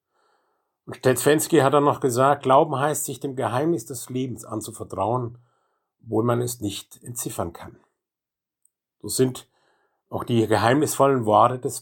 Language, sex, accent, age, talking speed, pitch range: German, male, German, 50-69, 130 wpm, 110-145 Hz